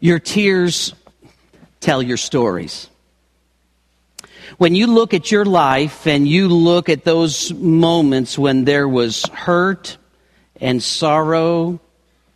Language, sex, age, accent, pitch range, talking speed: English, male, 50-69, American, 115-175 Hz, 110 wpm